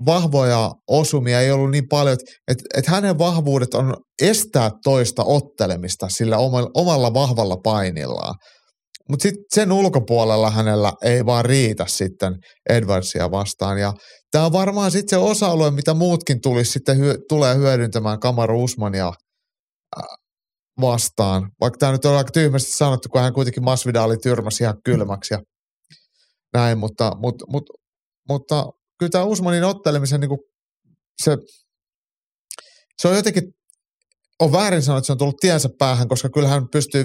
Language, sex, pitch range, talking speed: Finnish, male, 115-150 Hz, 145 wpm